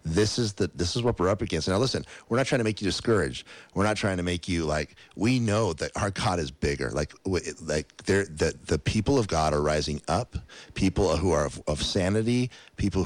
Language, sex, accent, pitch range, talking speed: English, male, American, 80-100 Hz, 225 wpm